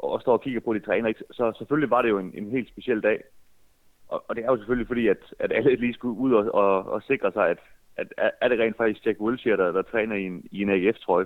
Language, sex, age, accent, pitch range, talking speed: Danish, male, 30-49, native, 95-125 Hz, 275 wpm